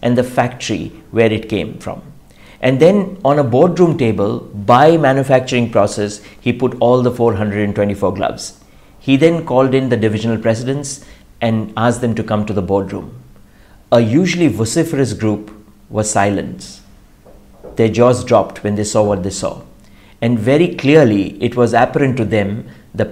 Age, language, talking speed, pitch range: 60-79, English, 160 wpm, 105-130 Hz